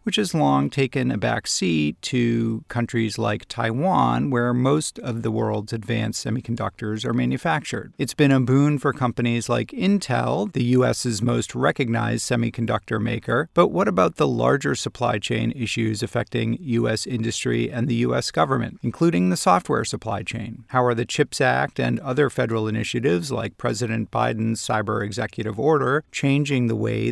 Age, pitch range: 40-59, 115-140 Hz